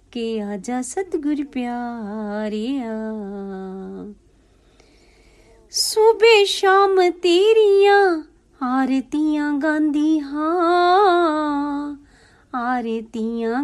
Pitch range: 235-355 Hz